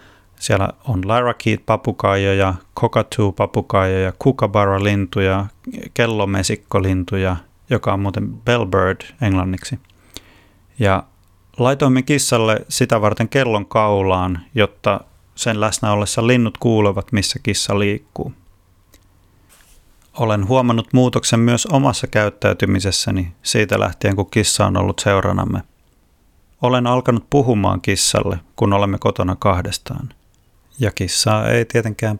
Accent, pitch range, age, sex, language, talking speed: native, 95-115 Hz, 30-49, male, Finnish, 100 wpm